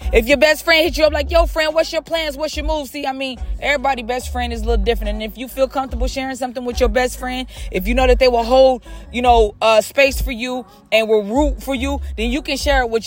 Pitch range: 220-275 Hz